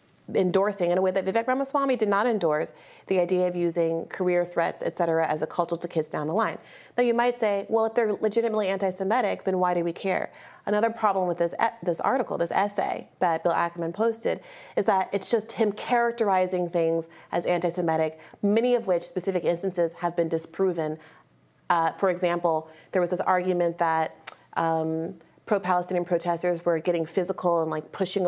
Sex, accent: female, American